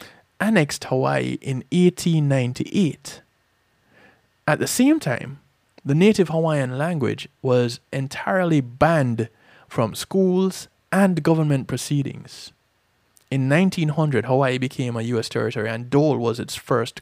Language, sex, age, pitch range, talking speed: English, male, 20-39, 125-165 Hz, 115 wpm